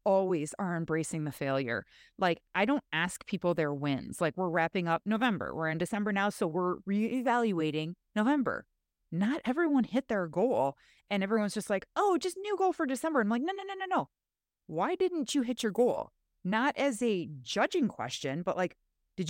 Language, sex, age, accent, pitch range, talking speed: English, female, 30-49, American, 160-230 Hz, 190 wpm